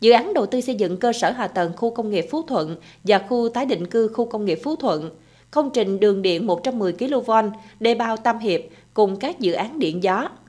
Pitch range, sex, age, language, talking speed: 190-250 Hz, female, 20-39, Vietnamese, 235 wpm